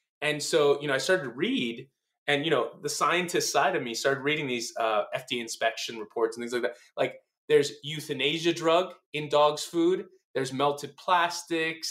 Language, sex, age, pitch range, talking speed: English, male, 20-39, 140-185 Hz, 185 wpm